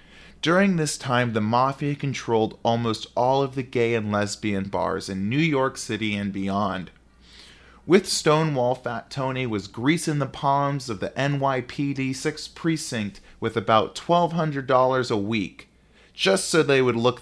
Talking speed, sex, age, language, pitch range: 150 wpm, male, 30-49, English, 105-140 Hz